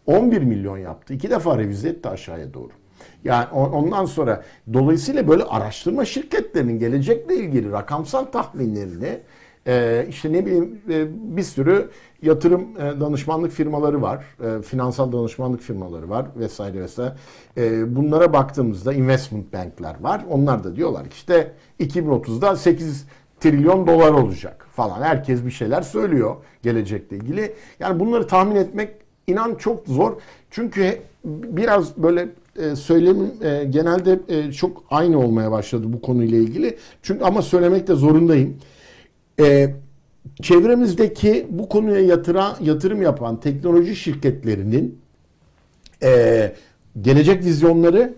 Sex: male